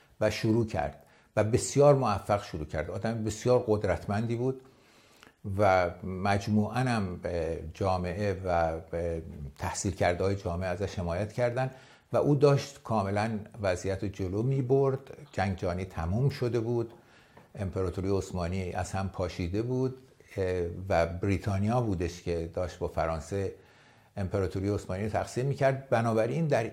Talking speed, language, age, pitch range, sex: 130 wpm, English, 60-79, 90-115 Hz, male